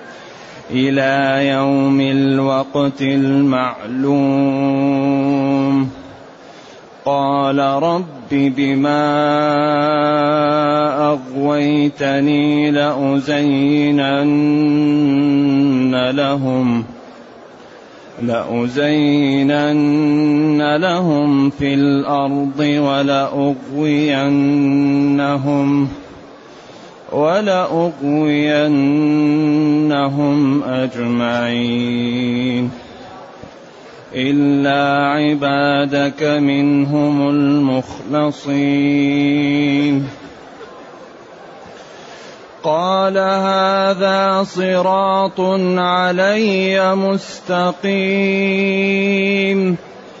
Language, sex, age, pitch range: Arabic, male, 30-49, 140-150 Hz